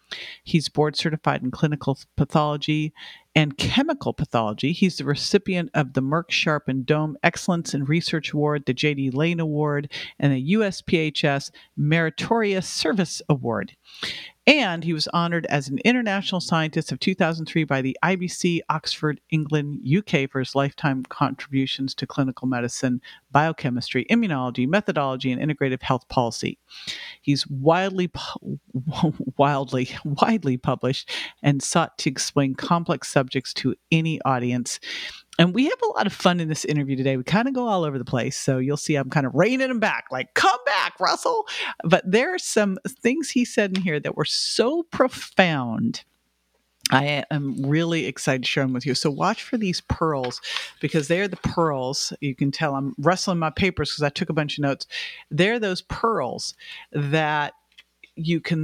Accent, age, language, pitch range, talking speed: American, 50-69, English, 135-180 Hz, 160 wpm